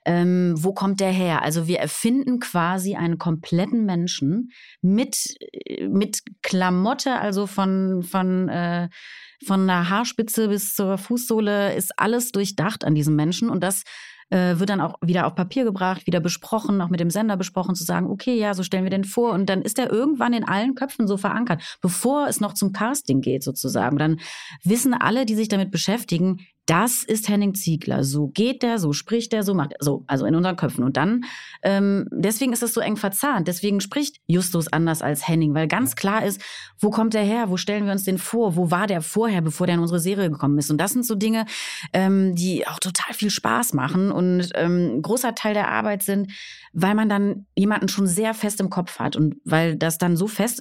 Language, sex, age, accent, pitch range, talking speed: German, female, 30-49, German, 175-215 Hz, 210 wpm